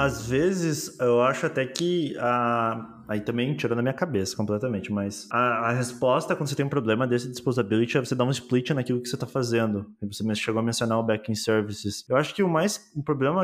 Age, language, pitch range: 20-39, Portuguese, 115-135 Hz